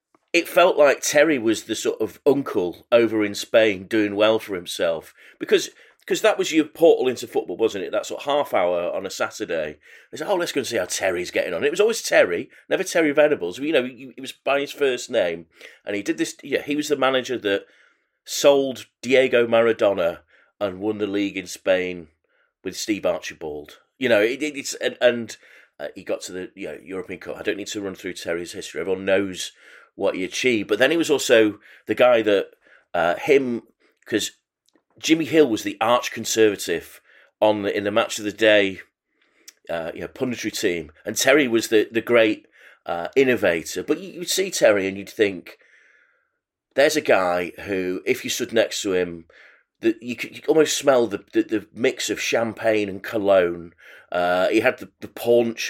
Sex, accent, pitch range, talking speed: male, British, 100-165 Hz, 195 wpm